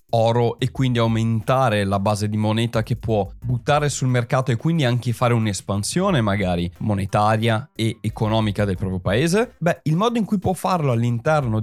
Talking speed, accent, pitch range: 170 wpm, native, 110-150 Hz